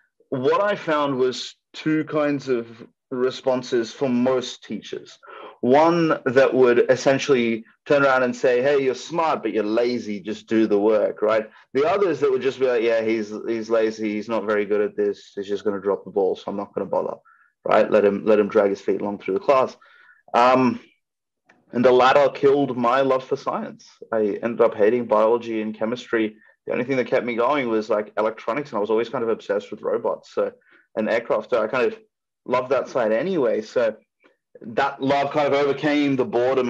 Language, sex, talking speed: English, male, 205 wpm